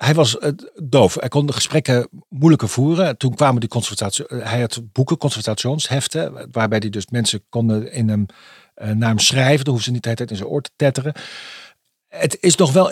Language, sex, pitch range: Dutch, male, 115-150 Hz